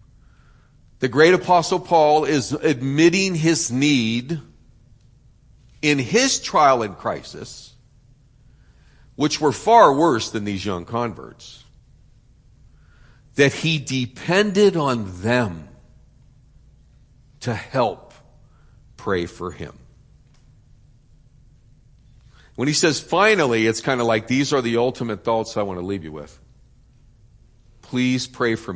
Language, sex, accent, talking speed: English, male, American, 110 wpm